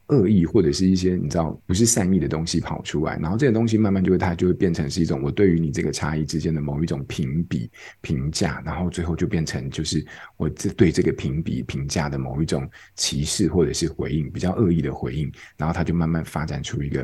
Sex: male